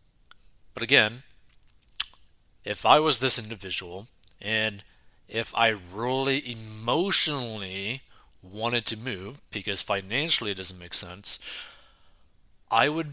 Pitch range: 105-135 Hz